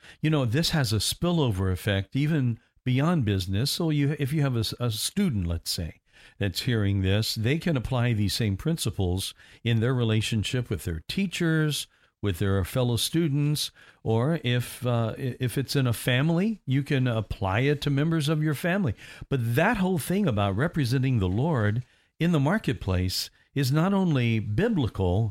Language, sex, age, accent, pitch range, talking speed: English, male, 60-79, American, 110-155 Hz, 170 wpm